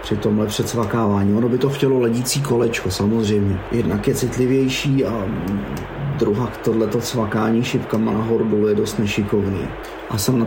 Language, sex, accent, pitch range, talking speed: Czech, male, native, 110-135 Hz, 150 wpm